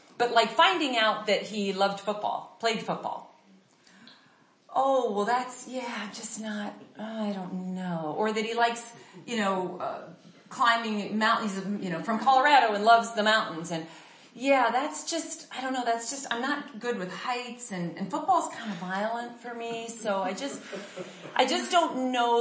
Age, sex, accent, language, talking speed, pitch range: 40-59, female, American, English, 175 wpm, 205-265 Hz